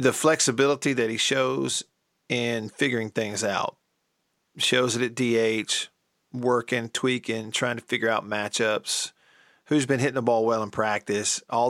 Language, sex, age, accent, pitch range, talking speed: English, male, 40-59, American, 115-135 Hz, 150 wpm